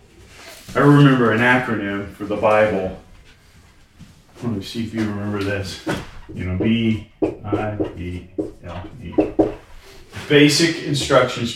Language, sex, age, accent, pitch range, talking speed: English, male, 30-49, American, 95-130 Hz, 120 wpm